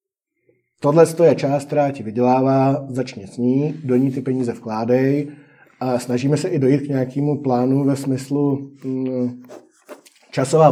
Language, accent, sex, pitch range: Czech, native, male, 130-150 Hz